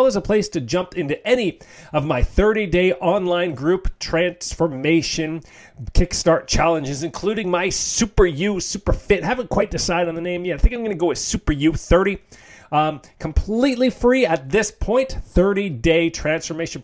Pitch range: 155-205 Hz